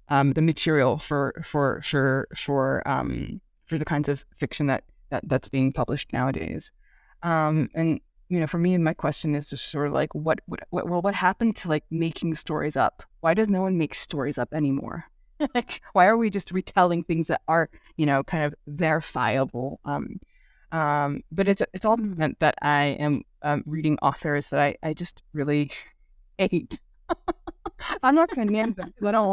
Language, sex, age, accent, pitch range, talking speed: English, female, 30-49, American, 145-180 Hz, 190 wpm